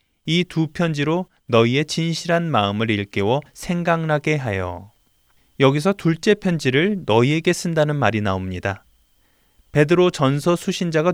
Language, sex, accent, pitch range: Korean, male, native, 115-170 Hz